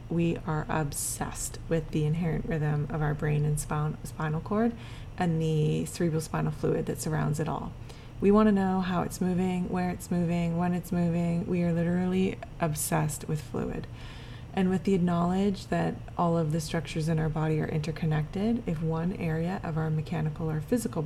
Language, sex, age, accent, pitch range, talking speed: English, female, 20-39, American, 155-180 Hz, 180 wpm